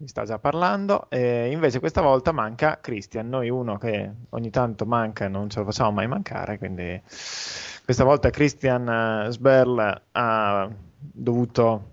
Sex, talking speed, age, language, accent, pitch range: male, 155 wpm, 20-39, Italian, native, 115-140 Hz